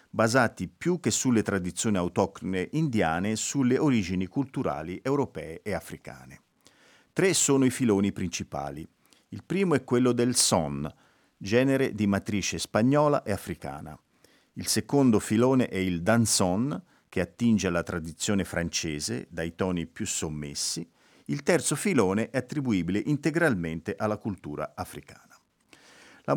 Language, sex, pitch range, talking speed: Italian, male, 90-130 Hz, 125 wpm